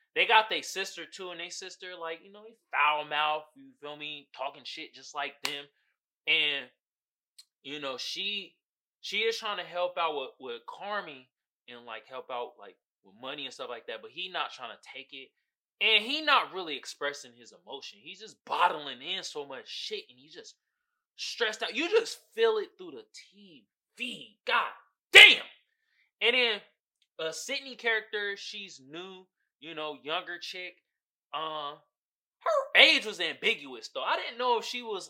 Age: 20-39